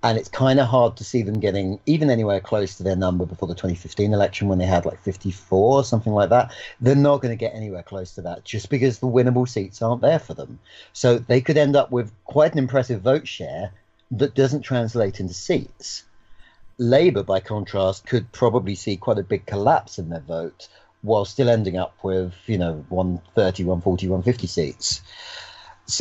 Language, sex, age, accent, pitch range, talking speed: English, male, 40-59, British, 95-125 Hz, 200 wpm